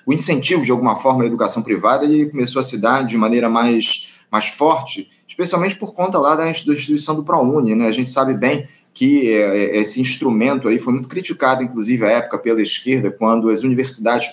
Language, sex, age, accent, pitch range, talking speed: Portuguese, male, 20-39, Brazilian, 120-155 Hz, 195 wpm